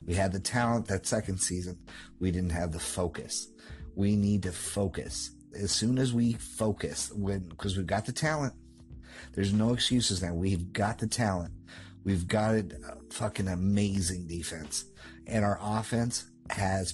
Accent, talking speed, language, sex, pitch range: American, 155 wpm, English, male, 90-105 Hz